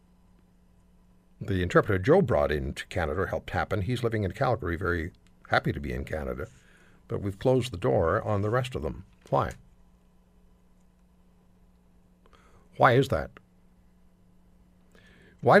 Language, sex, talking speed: English, male, 125 wpm